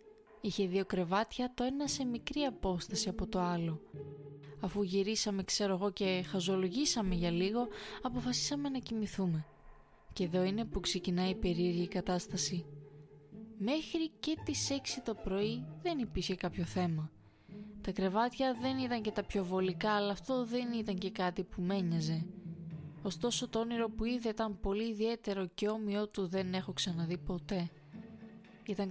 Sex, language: female, Greek